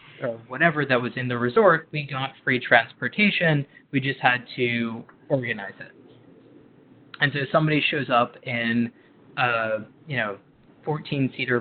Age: 20-39